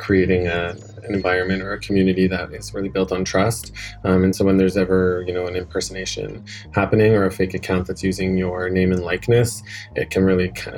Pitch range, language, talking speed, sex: 95-105 Hz, English, 210 wpm, male